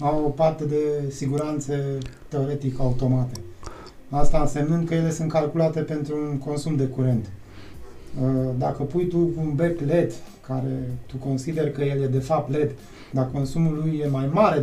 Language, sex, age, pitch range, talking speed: Romanian, male, 30-49, 130-165 Hz, 160 wpm